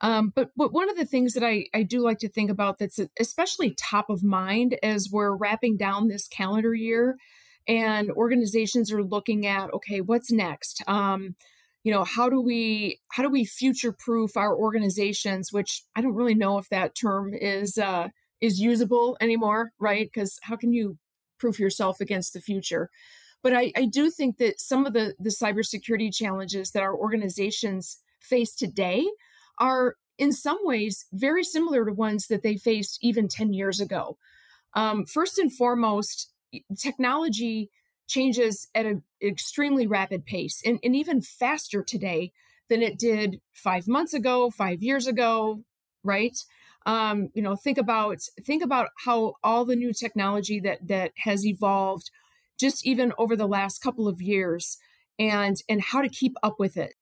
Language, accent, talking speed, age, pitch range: English, American, 170 wpm, 30-49, 200-250 Hz